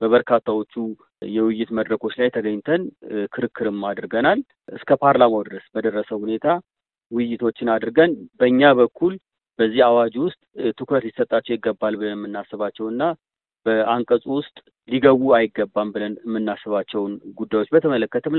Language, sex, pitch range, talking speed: Amharic, male, 110-125 Hz, 100 wpm